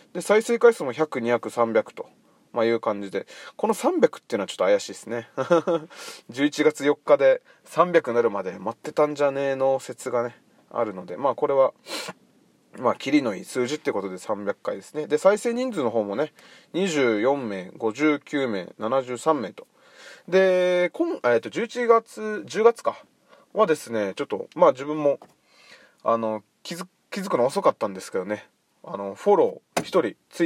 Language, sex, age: Japanese, male, 20-39